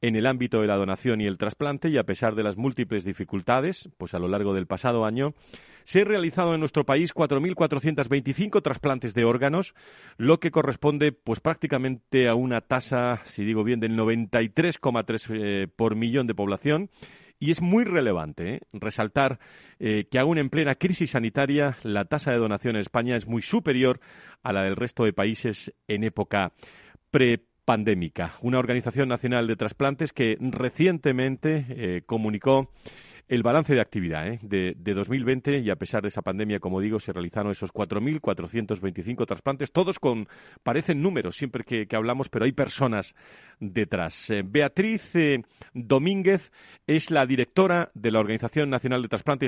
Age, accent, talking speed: 40-59, Spanish, 165 wpm